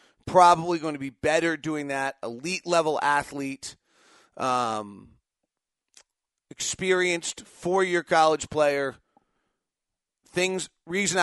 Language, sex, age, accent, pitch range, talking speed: English, male, 40-59, American, 140-180 Hz, 90 wpm